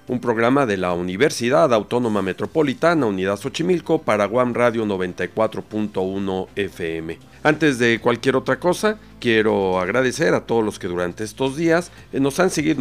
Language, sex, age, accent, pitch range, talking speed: Spanish, male, 50-69, Mexican, 95-135 Hz, 140 wpm